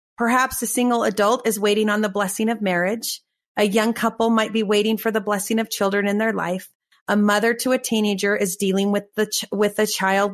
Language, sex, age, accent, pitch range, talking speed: English, female, 30-49, American, 195-230 Hz, 220 wpm